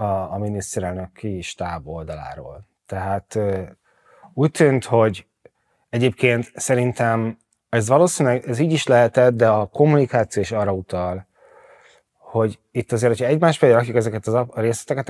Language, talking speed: Hungarian, 130 wpm